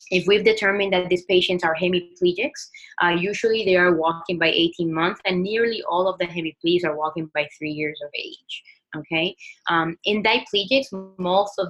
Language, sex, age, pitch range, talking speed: English, female, 20-39, 170-205 Hz, 180 wpm